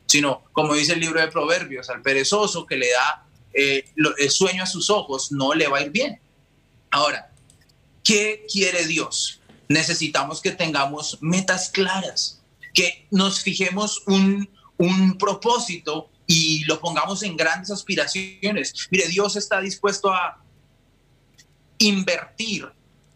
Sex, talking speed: male, 130 wpm